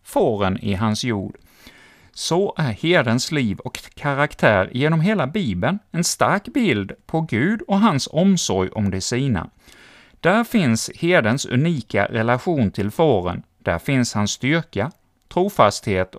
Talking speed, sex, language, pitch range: 135 wpm, male, Swedish, 105-150 Hz